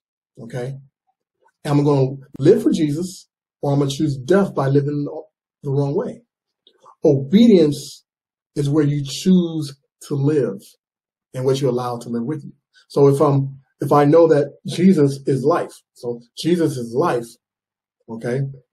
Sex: male